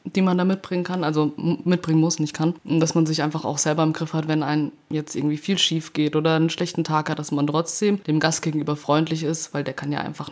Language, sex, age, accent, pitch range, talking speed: German, female, 20-39, German, 150-170 Hz, 260 wpm